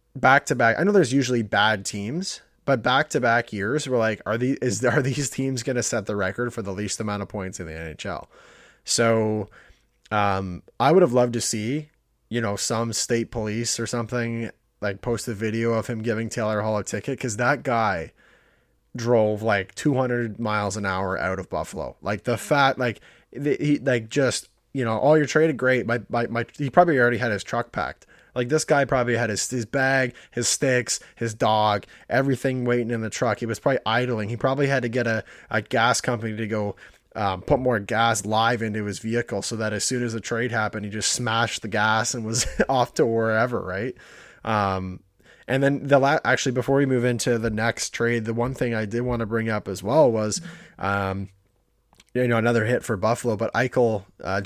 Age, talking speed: 20-39, 215 wpm